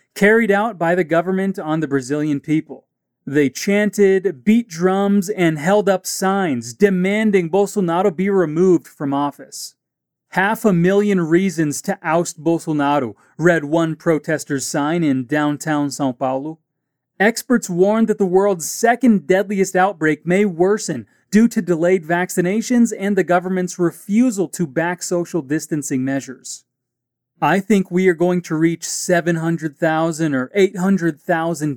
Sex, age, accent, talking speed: male, 30-49, American, 135 wpm